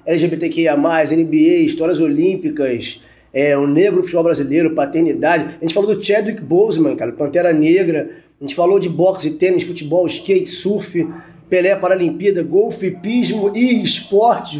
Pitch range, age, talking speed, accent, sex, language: 155-215 Hz, 20-39, 130 wpm, Brazilian, male, Portuguese